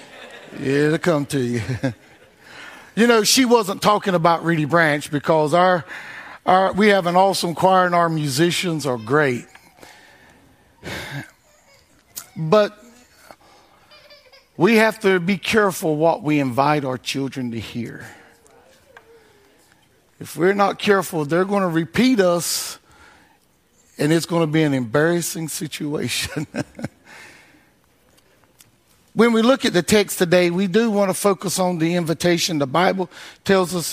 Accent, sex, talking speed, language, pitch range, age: American, male, 135 wpm, English, 150-200 Hz, 50-69